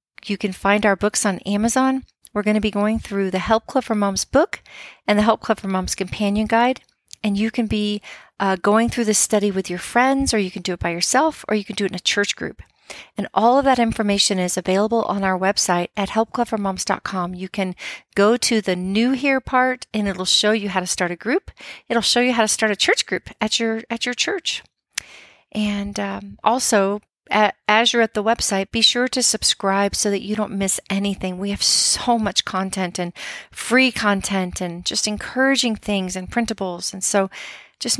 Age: 40-59